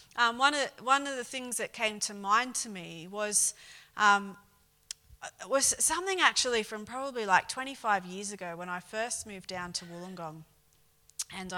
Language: English